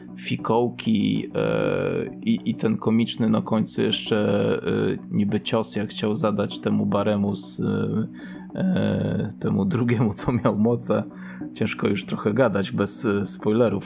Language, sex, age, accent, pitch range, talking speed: Polish, male, 20-39, native, 95-125 Hz, 125 wpm